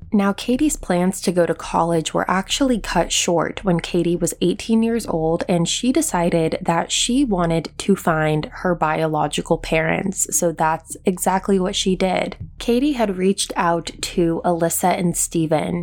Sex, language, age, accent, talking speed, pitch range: female, English, 20-39, American, 160 wpm, 165-200 Hz